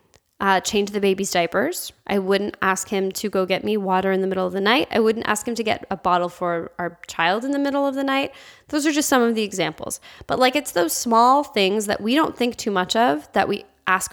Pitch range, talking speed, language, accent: 200-255 Hz, 255 wpm, English, American